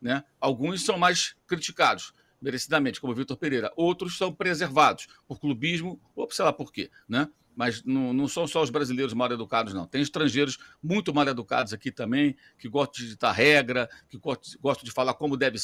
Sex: male